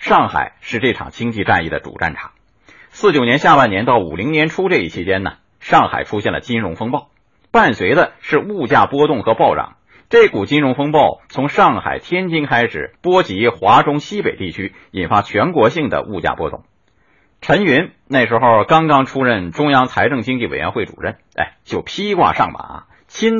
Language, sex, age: Chinese, male, 50-69